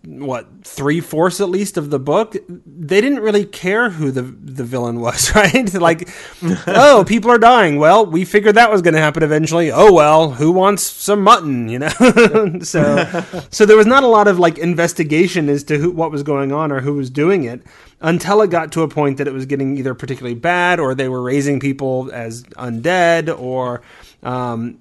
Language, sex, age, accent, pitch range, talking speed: English, male, 30-49, American, 140-190 Hz, 200 wpm